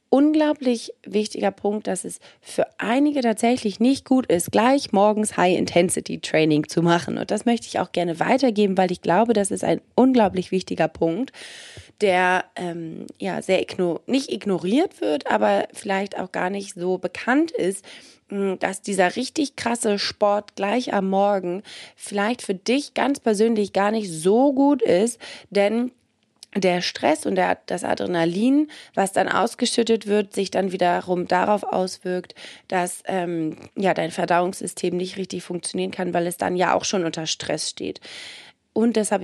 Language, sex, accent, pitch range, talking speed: German, female, German, 180-225 Hz, 155 wpm